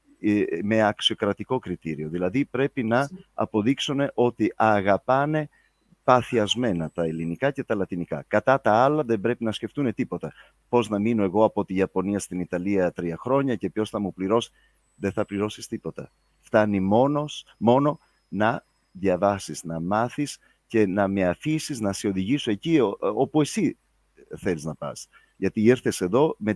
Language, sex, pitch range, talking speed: Greek, male, 95-125 Hz, 150 wpm